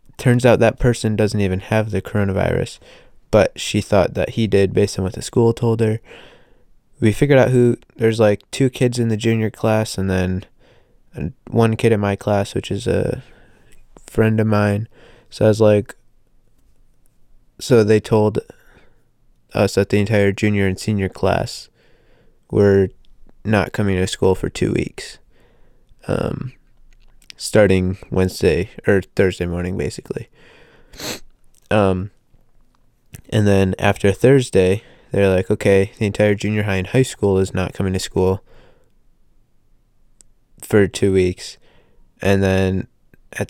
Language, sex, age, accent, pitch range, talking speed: English, male, 20-39, American, 95-115 Hz, 140 wpm